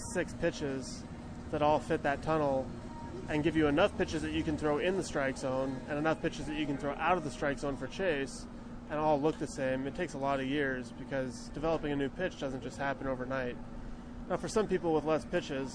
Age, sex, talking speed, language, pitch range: 20-39, male, 235 wpm, English, 130-150 Hz